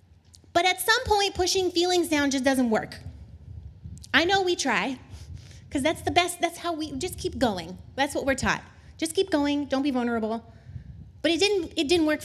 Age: 20-39